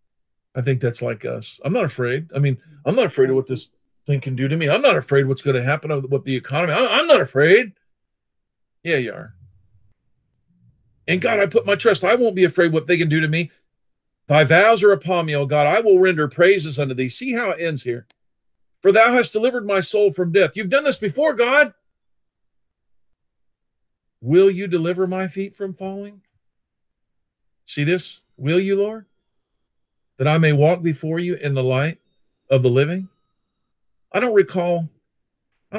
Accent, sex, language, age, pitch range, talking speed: American, male, English, 50-69, 135-210 Hz, 190 wpm